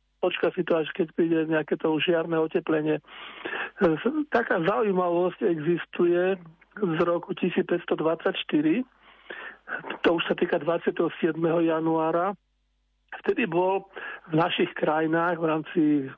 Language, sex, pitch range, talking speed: Slovak, male, 160-180 Hz, 110 wpm